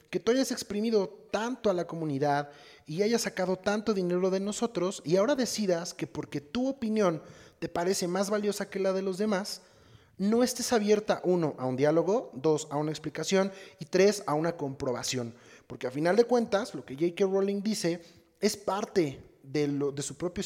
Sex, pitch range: male, 150-210 Hz